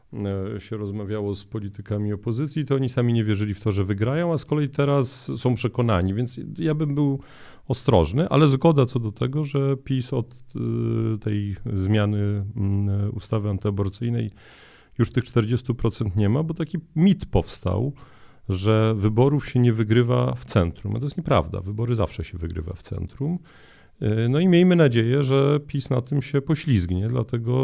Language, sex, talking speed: Polish, male, 160 wpm